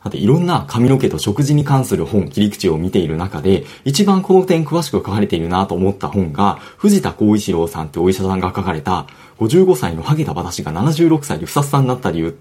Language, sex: Japanese, male